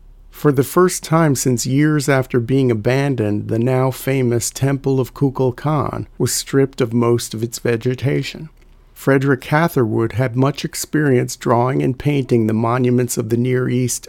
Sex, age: male, 50-69